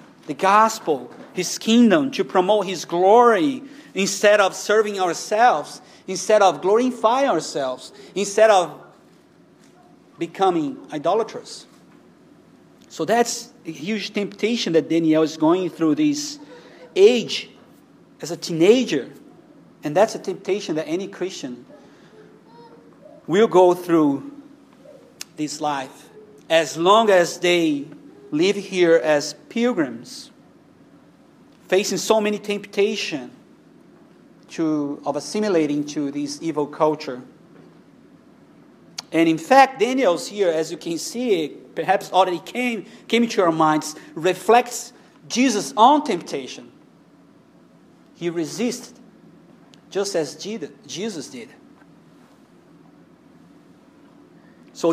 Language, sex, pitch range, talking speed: English, male, 165-235 Hz, 100 wpm